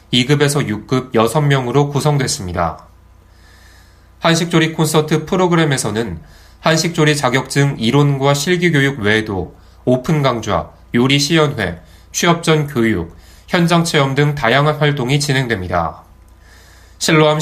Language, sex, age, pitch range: Korean, male, 20-39, 95-150 Hz